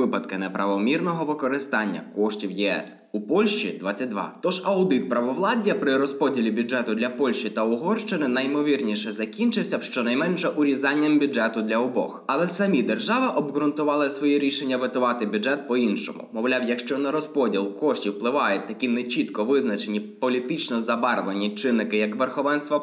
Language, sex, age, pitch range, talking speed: Ukrainian, male, 20-39, 110-150 Hz, 130 wpm